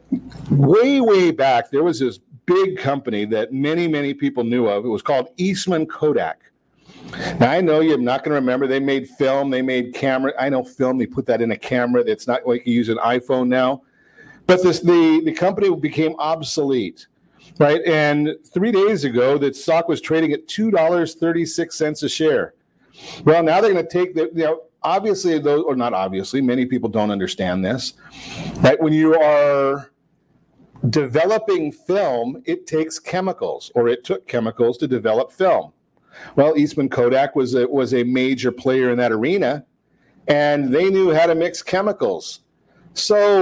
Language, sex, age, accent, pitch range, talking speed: English, male, 50-69, American, 130-170 Hz, 175 wpm